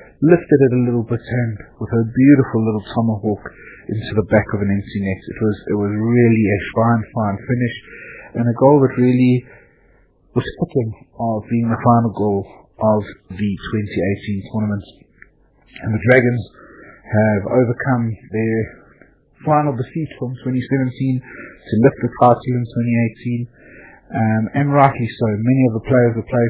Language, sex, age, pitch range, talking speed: English, male, 30-49, 105-120 Hz, 155 wpm